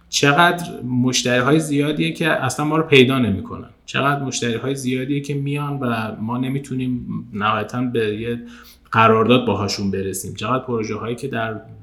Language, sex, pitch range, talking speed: Persian, male, 110-130 Hz, 145 wpm